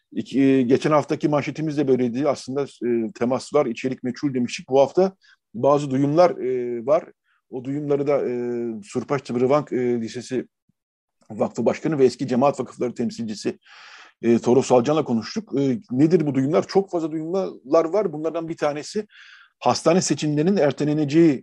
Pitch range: 120-155 Hz